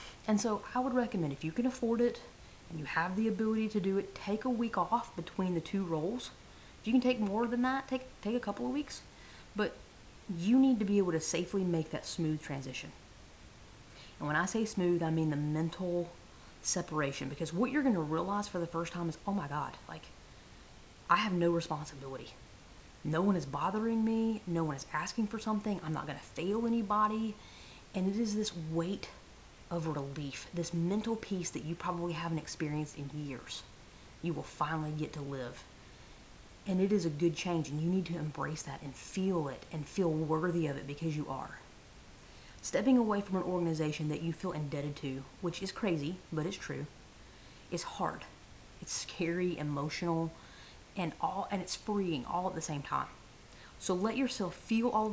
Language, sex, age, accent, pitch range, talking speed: English, female, 30-49, American, 155-210 Hz, 195 wpm